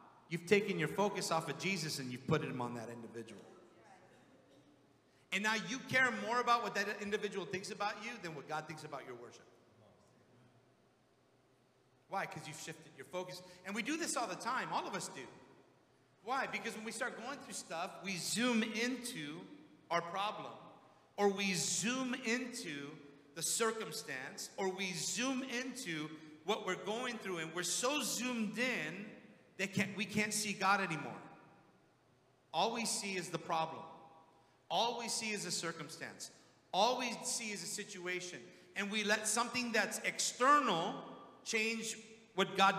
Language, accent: English, American